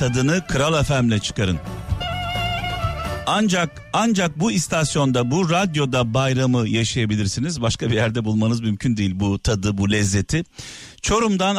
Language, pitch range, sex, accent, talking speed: Turkish, 100-150 Hz, male, native, 120 wpm